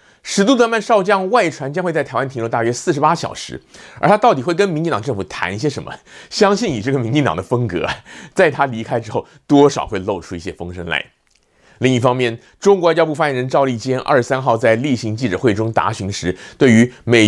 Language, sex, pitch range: Chinese, male, 115-160 Hz